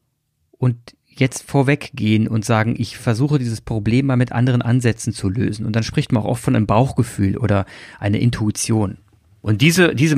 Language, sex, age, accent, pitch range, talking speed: German, male, 30-49, German, 110-140 Hz, 175 wpm